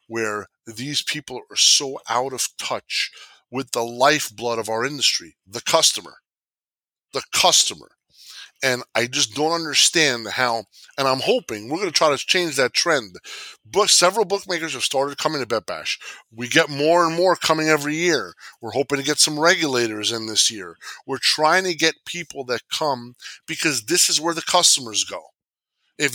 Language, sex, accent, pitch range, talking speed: English, male, American, 130-180 Hz, 170 wpm